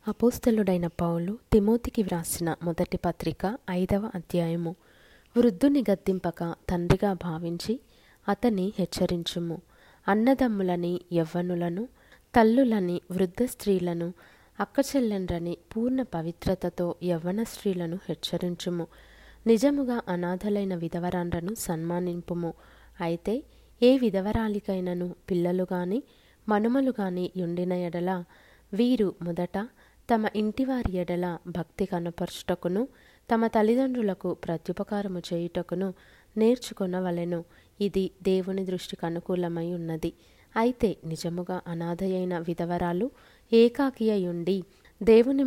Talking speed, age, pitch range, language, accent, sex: 80 wpm, 20-39, 175-220 Hz, Telugu, native, female